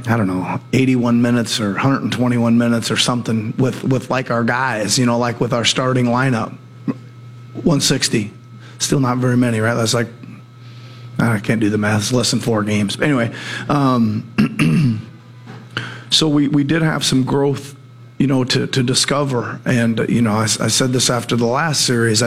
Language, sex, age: English, male, 40-59